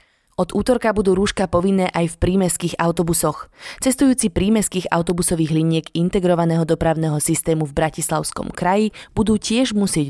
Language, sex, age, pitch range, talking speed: Slovak, female, 20-39, 160-200 Hz, 130 wpm